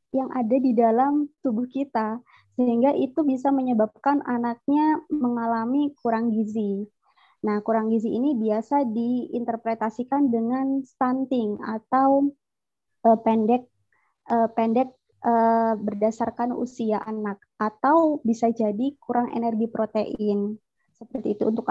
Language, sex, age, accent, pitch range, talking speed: Indonesian, male, 20-39, native, 225-270 Hz, 110 wpm